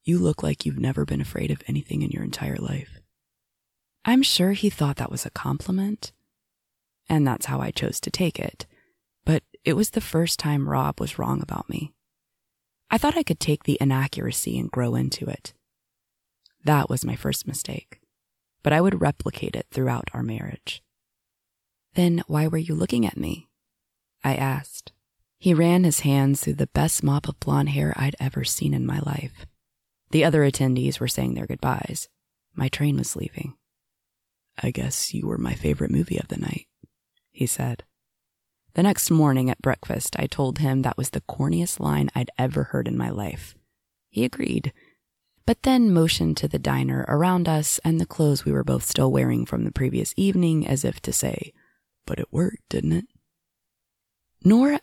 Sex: female